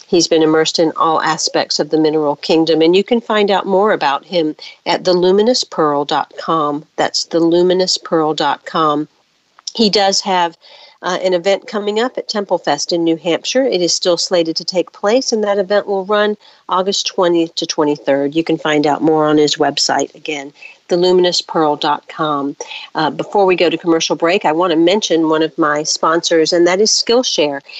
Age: 50-69